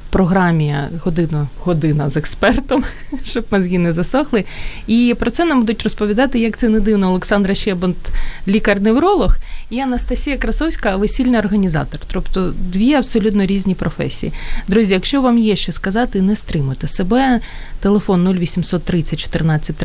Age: 30-49